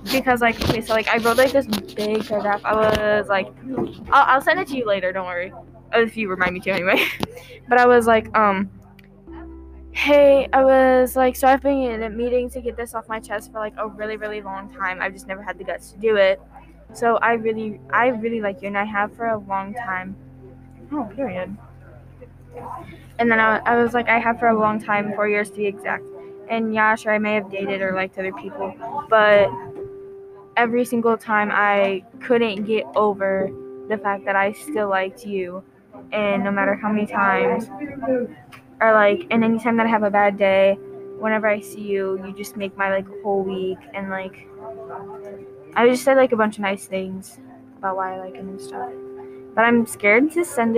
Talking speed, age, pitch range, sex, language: 205 wpm, 10-29, 195-235 Hz, female, English